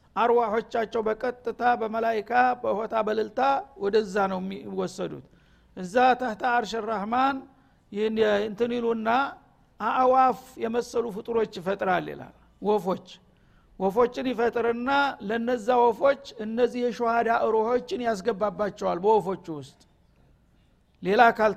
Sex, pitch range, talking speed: male, 210-245 Hz, 90 wpm